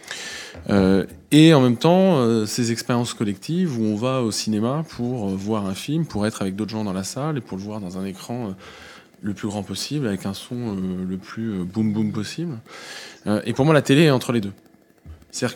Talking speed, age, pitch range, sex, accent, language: 230 wpm, 20-39, 105-130 Hz, male, French, French